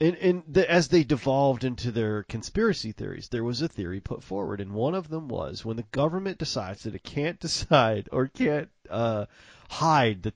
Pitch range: 100-140 Hz